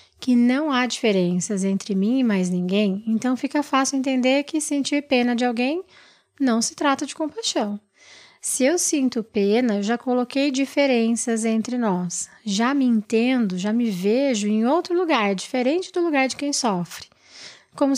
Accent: Brazilian